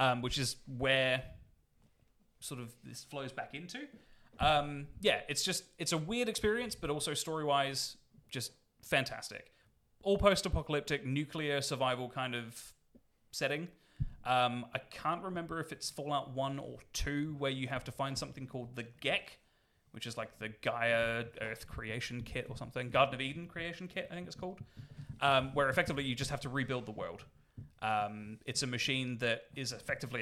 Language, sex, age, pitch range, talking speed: English, male, 30-49, 120-150 Hz, 170 wpm